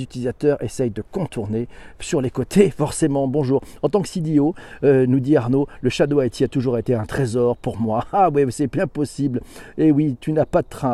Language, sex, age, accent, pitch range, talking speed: French, male, 40-59, French, 125-170 Hz, 220 wpm